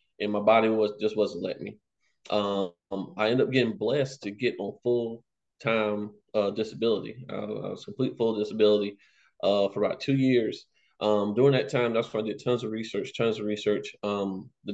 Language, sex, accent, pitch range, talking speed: English, male, American, 105-120 Hz, 190 wpm